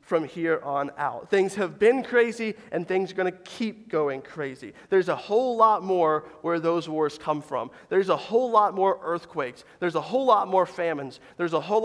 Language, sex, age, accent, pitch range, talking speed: English, male, 30-49, American, 155-200 Hz, 210 wpm